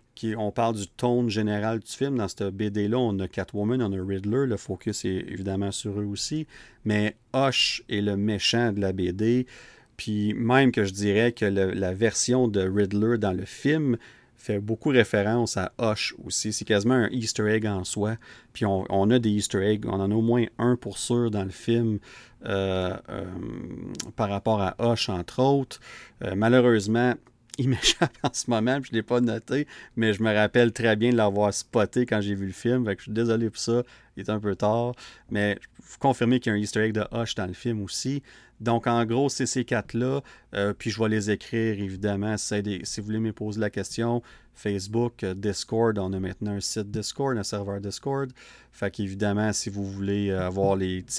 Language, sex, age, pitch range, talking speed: French, male, 40-59, 100-120 Hz, 210 wpm